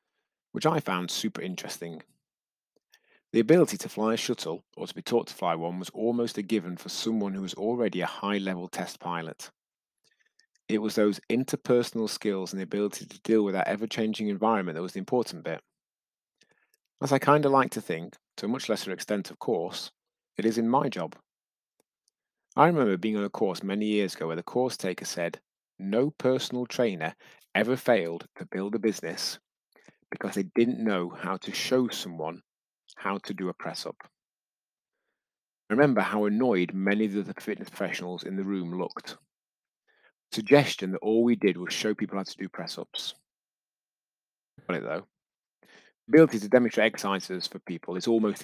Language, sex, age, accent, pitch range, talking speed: English, male, 30-49, British, 95-120 Hz, 170 wpm